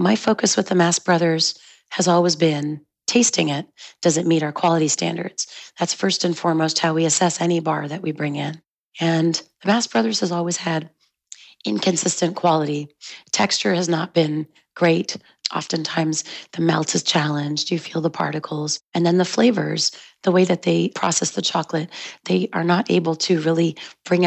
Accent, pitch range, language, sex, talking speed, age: American, 155-175 Hz, English, female, 175 wpm, 30-49